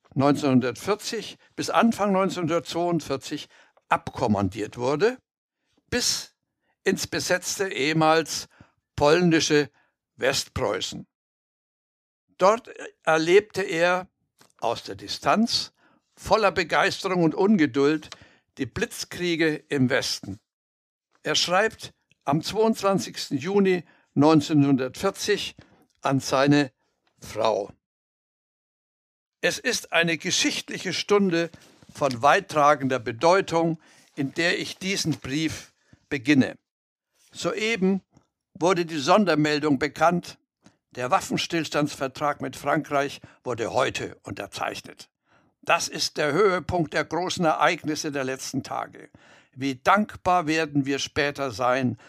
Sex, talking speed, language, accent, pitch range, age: male, 90 wpm, German, German, 140-180 Hz, 60-79